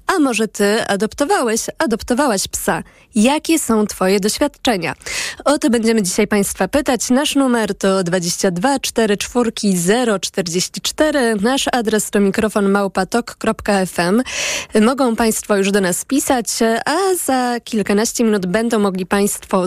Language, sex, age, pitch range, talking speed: Polish, female, 20-39, 195-235 Hz, 130 wpm